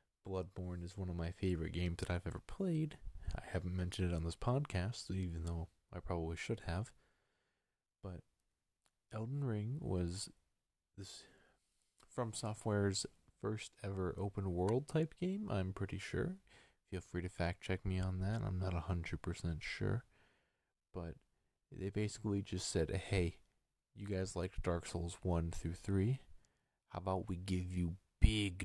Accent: American